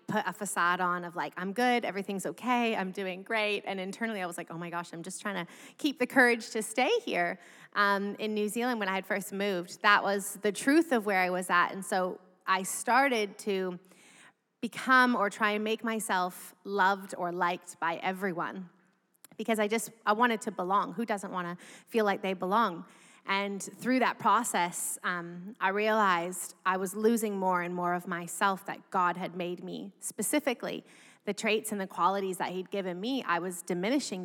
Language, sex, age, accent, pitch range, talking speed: English, female, 20-39, American, 185-220 Hz, 200 wpm